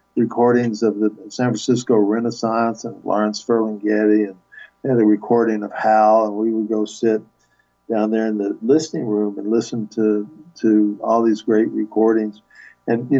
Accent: American